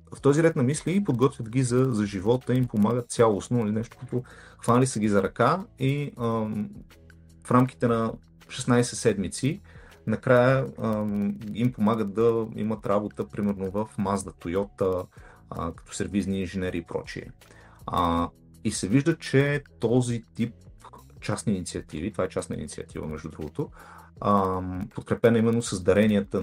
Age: 30-49